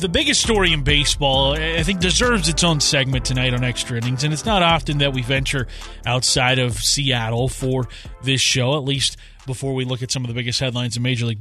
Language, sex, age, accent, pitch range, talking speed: English, male, 30-49, American, 125-155 Hz, 220 wpm